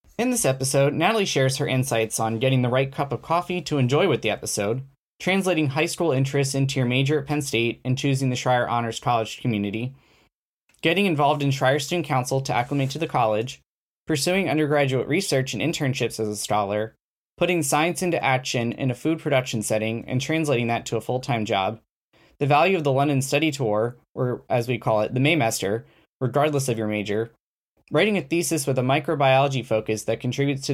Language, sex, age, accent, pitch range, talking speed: English, male, 10-29, American, 120-150 Hz, 195 wpm